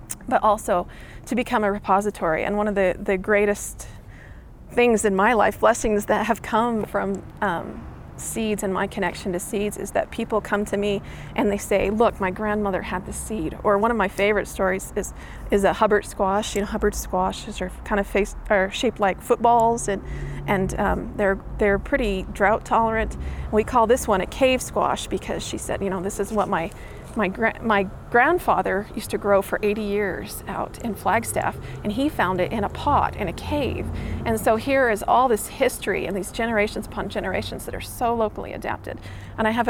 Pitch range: 195-220 Hz